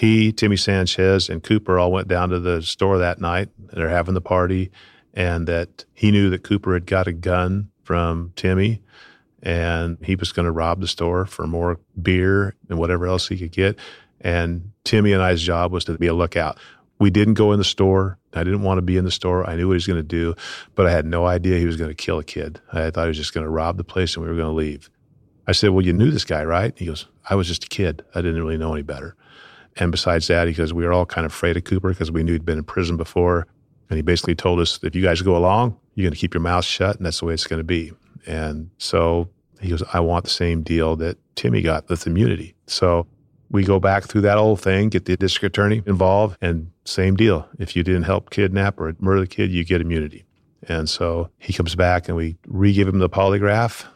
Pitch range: 85-95 Hz